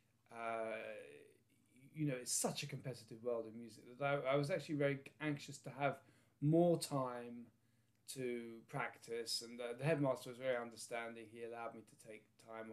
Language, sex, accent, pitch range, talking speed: English, male, British, 115-140 Hz, 170 wpm